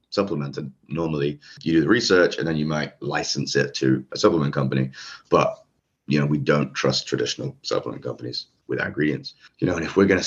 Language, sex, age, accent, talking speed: English, male, 30-49, British, 205 wpm